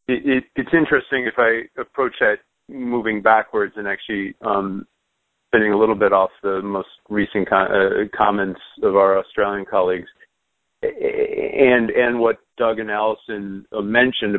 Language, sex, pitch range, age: English, male, 100-120 Hz, 40-59